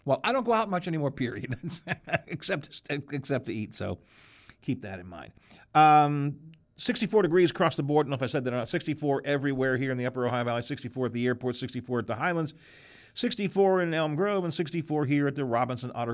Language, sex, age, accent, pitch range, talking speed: English, male, 50-69, American, 110-145 Hz, 220 wpm